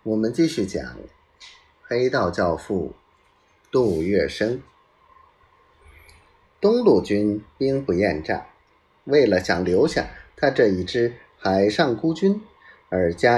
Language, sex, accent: Chinese, male, native